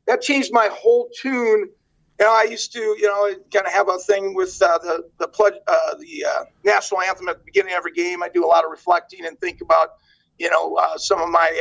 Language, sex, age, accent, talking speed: English, male, 40-59, American, 250 wpm